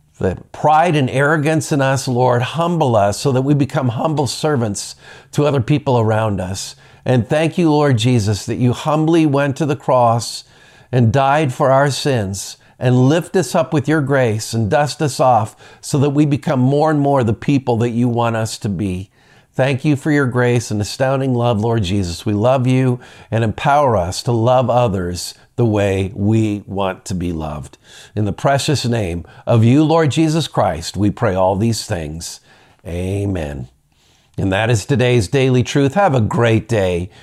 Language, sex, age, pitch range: English, male, 50-69, 100-135 Hz